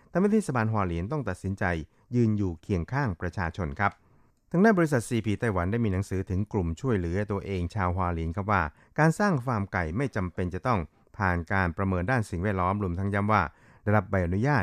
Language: Thai